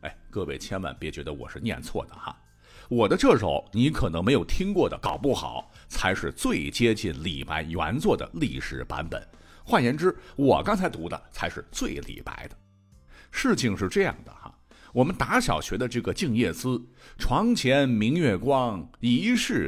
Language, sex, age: Chinese, male, 50-69